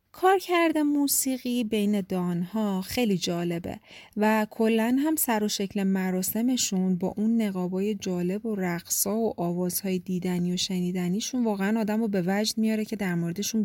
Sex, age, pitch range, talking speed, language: female, 30-49, 185-230 Hz, 145 wpm, Persian